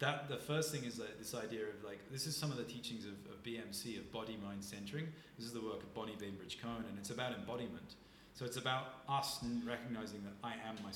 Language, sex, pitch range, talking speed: English, male, 105-120 Hz, 245 wpm